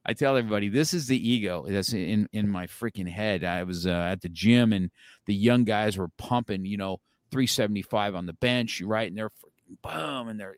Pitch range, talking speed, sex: 100-125 Hz, 210 wpm, male